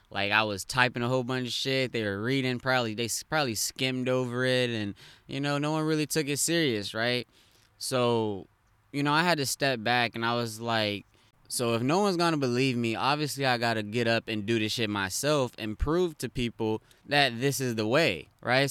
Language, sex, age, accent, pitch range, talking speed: English, male, 20-39, American, 110-135 Hz, 215 wpm